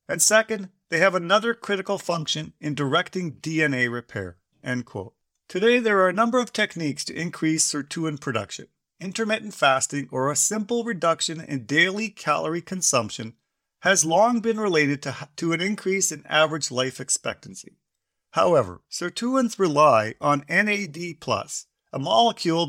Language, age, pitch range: English, 50-69, 140-205 Hz